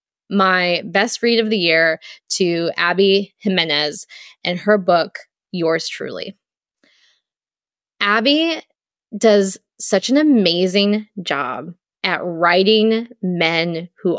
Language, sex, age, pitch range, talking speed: English, female, 20-39, 185-240 Hz, 100 wpm